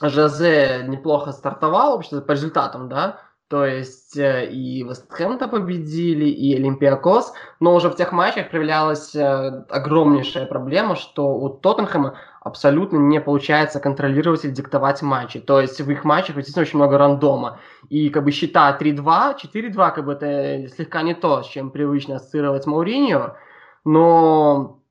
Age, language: 20-39, Russian